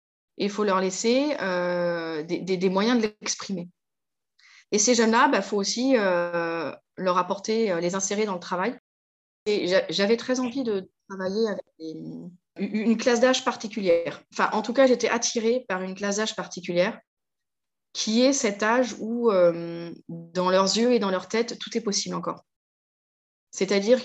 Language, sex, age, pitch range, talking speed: French, female, 20-39, 180-230 Hz, 170 wpm